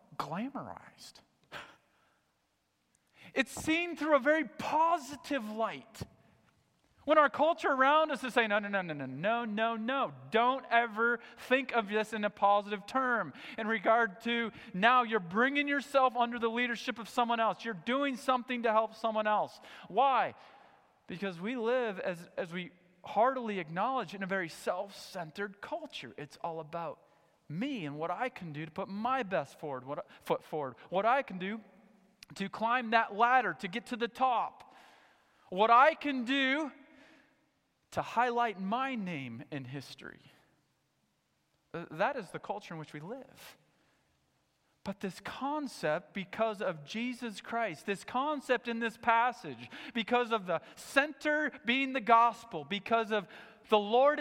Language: English